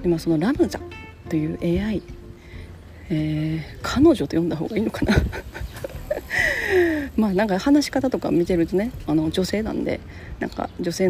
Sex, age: female, 40-59